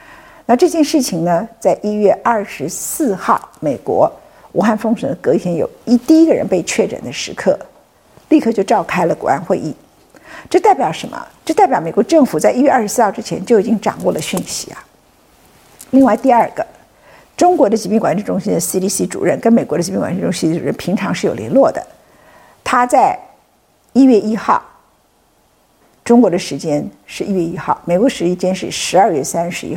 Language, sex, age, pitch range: Chinese, female, 50-69, 195-280 Hz